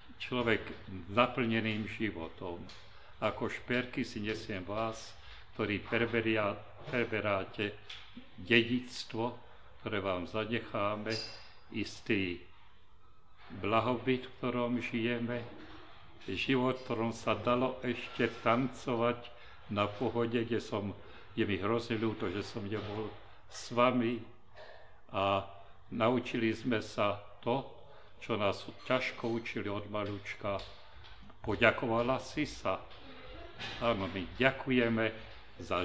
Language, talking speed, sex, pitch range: Slovak, 95 wpm, male, 100-120 Hz